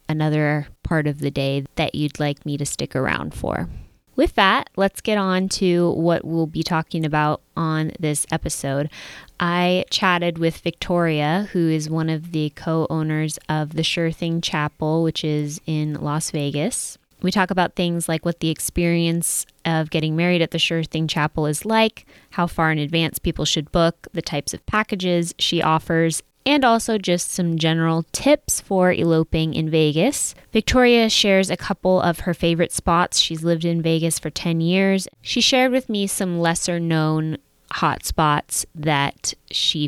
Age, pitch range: 20-39, 150-175 Hz